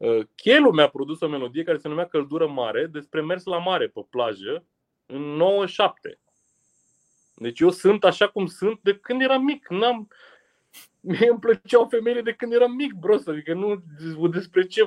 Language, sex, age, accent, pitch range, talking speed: Romanian, male, 30-49, native, 135-200 Hz, 170 wpm